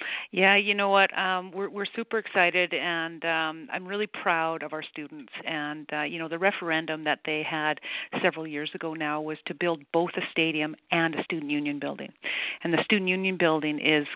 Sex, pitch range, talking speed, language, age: female, 160-200 Hz, 200 wpm, English, 40-59